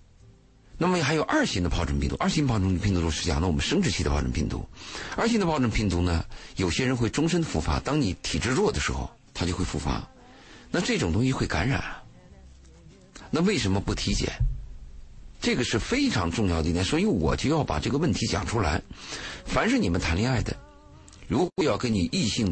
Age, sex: 50-69, male